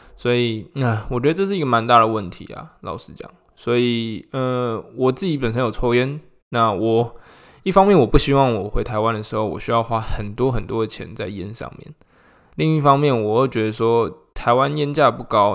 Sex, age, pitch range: male, 20-39, 110-130 Hz